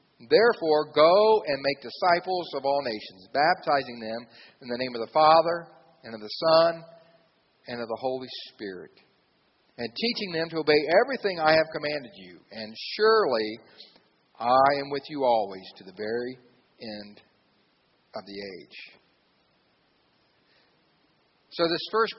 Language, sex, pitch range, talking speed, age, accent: English, male, 130-165 Hz, 140 wpm, 50-69, American